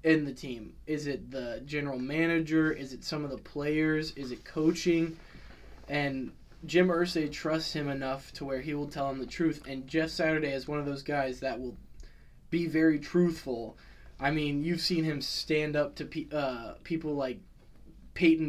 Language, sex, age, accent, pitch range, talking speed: English, male, 20-39, American, 130-155 Hz, 180 wpm